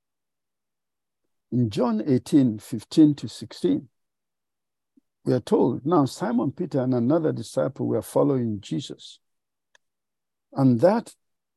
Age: 60-79